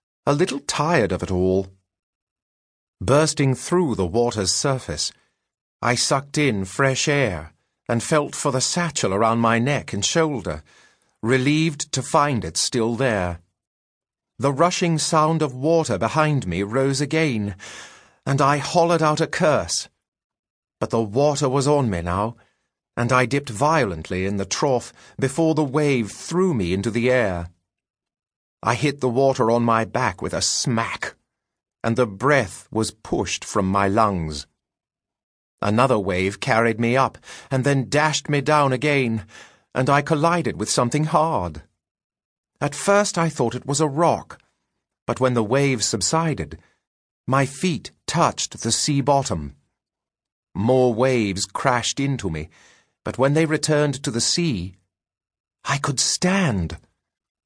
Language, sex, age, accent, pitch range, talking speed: English, male, 40-59, British, 100-145 Hz, 145 wpm